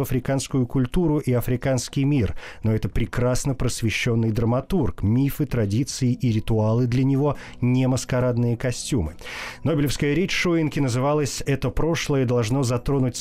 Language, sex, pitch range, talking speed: Russian, male, 110-140 Hz, 125 wpm